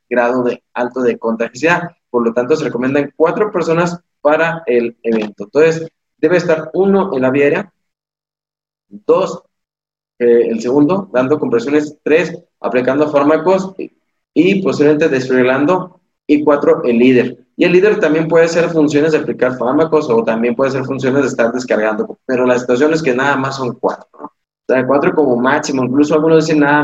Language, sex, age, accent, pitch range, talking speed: Spanish, male, 20-39, Mexican, 125-160 Hz, 170 wpm